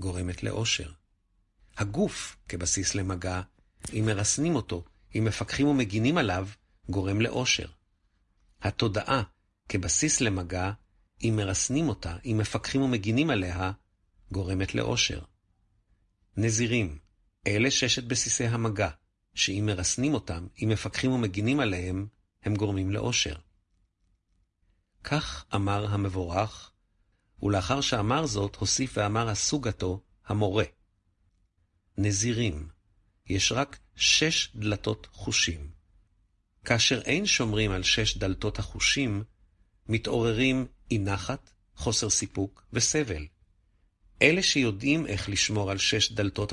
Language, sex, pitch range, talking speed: Hebrew, male, 95-115 Hz, 100 wpm